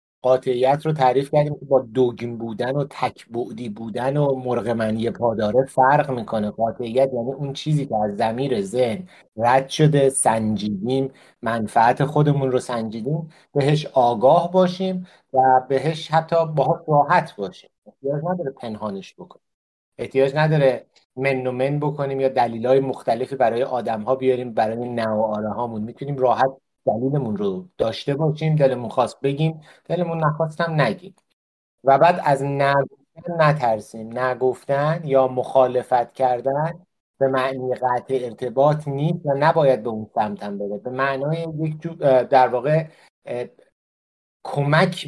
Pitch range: 125-155 Hz